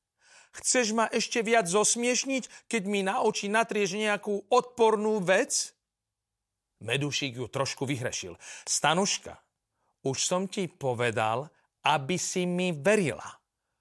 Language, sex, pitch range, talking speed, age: Slovak, male, 110-185 Hz, 115 wpm, 40-59